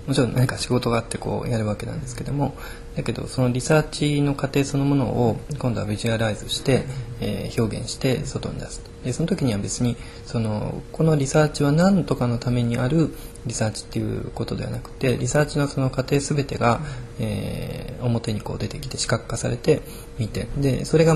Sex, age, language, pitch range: male, 20-39, Japanese, 115-140 Hz